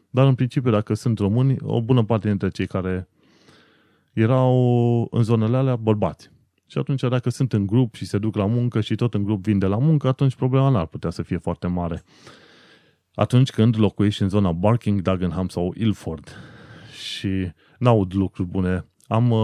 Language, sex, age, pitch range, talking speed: Romanian, male, 20-39, 95-120 Hz, 185 wpm